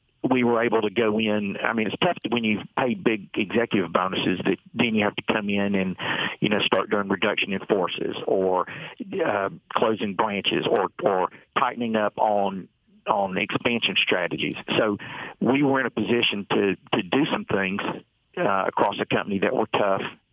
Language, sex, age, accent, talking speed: English, male, 50-69, American, 185 wpm